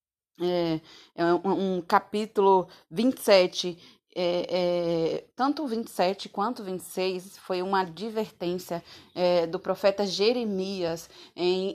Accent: Brazilian